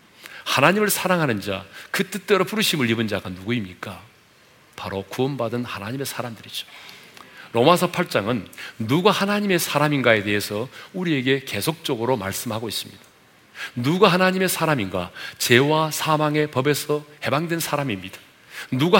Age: 40-59